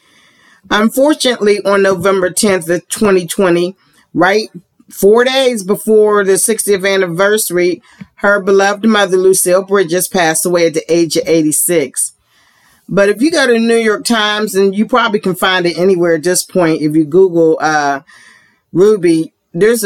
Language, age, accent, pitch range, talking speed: English, 40-59, American, 165-205 Hz, 145 wpm